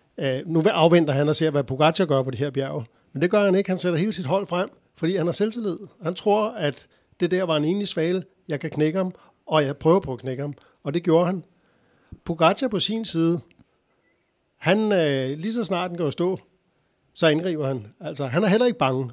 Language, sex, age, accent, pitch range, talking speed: Danish, male, 60-79, native, 145-180 Hz, 230 wpm